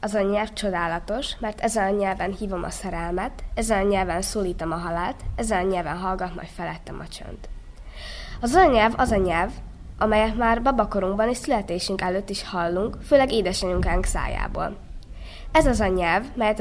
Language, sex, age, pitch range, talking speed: Hungarian, female, 20-39, 175-220 Hz, 170 wpm